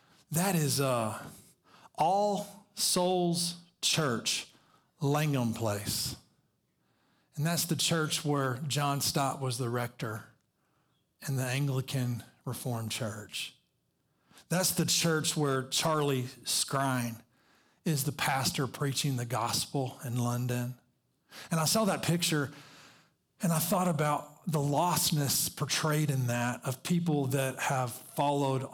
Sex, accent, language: male, American, English